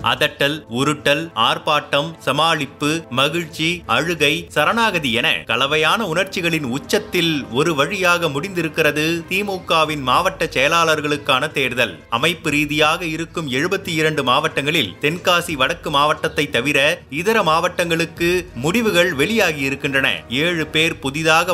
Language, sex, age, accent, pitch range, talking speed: Tamil, male, 30-49, native, 145-175 Hz, 100 wpm